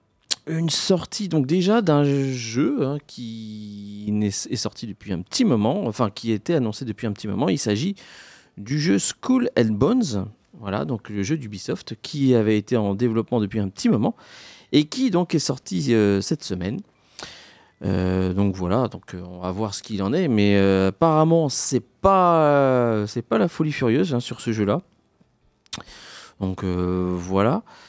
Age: 40-59